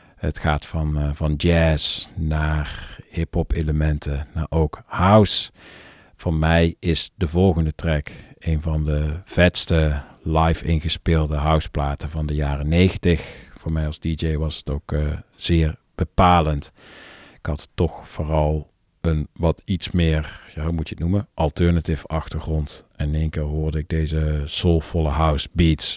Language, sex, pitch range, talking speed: Dutch, male, 75-85 Hz, 145 wpm